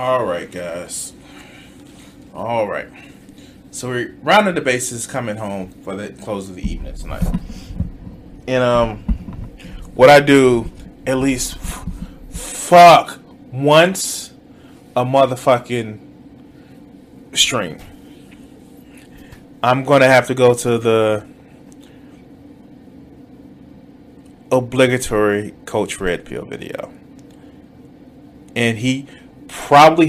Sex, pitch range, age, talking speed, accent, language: male, 110-150 Hz, 20-39, 95 wpm, American, English